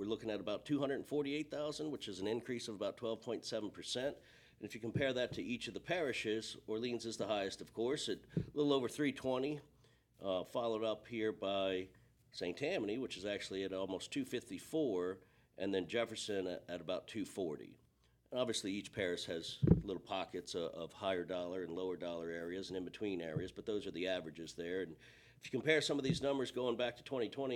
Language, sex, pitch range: English, male, 95-125 Hz